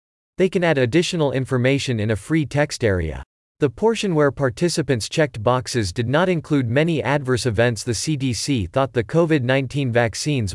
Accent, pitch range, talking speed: American, 110-155 Hz, 160 wpm